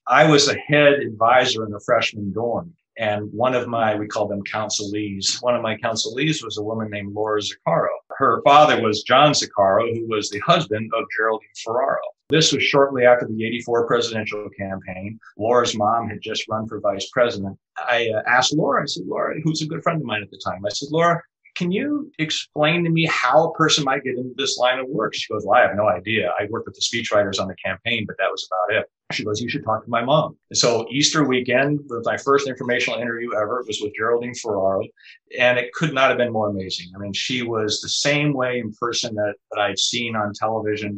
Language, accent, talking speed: English, American, 225 wpm